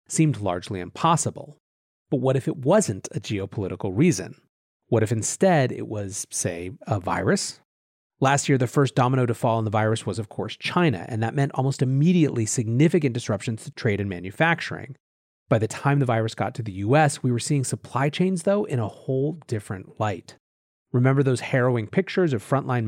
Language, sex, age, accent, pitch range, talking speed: English, male, 30-49, American, 110-155 Hz, 185 wpm